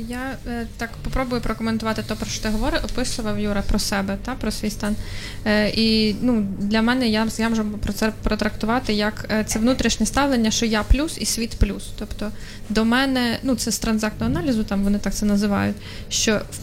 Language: Ukrainian